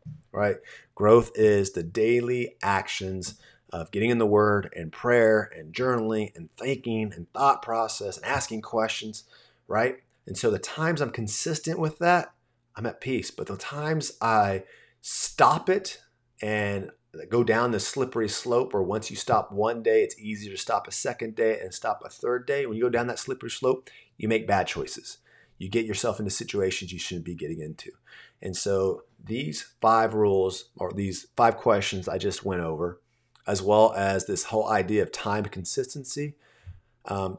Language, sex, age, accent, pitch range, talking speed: English, male, 30-49, American, 100-125 Hz, 175 wpm